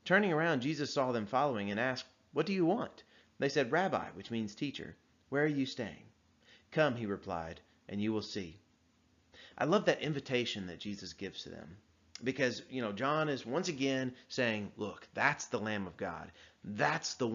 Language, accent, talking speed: English, American, 185 wpm